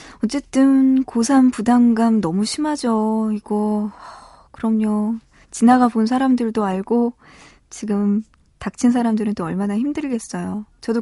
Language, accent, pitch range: Korean, native, 200-245 Hz